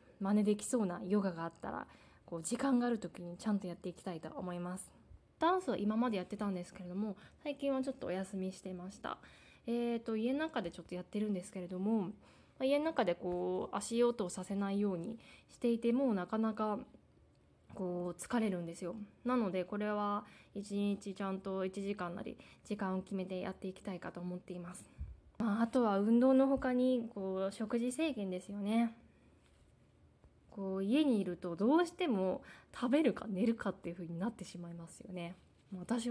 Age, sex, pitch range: 20-39, female, 185-235 Hz